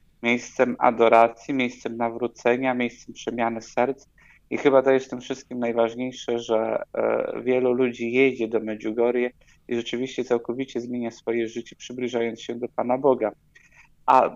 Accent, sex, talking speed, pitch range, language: native, male, 140 wpm, 115-135 Hz, Polish